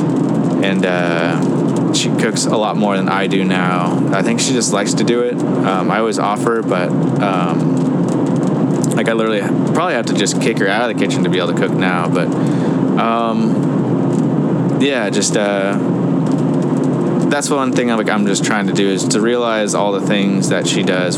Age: 20-39